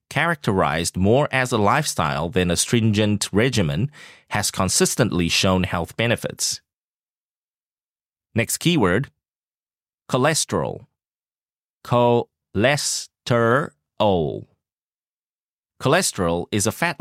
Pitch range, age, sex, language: 95-135 Hz, 30-49, male, English